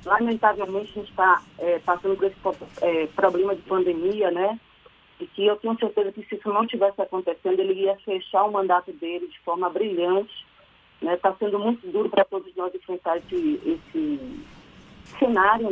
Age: 40-59